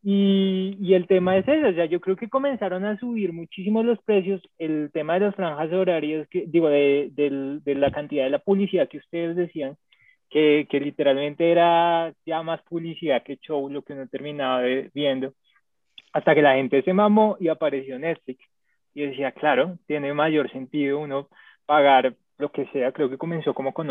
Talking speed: 195 wpm